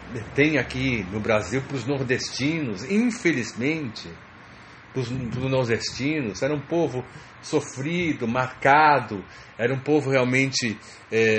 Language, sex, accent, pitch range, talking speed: English, male, Brazilian, 105-150 Hz, 105 wpm